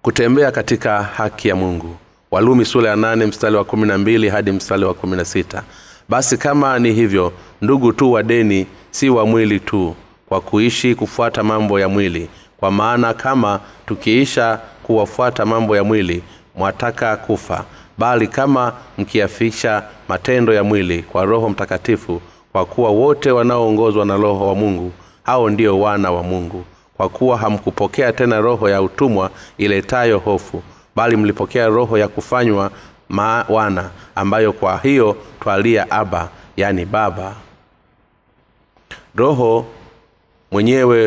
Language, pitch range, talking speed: Swahili, 95-115 Hz, 130 wpm